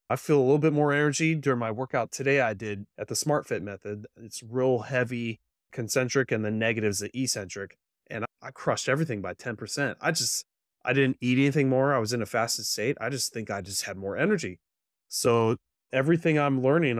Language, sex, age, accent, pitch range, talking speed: English, male, 30-49, American, 110-140 Hz, 205 wpm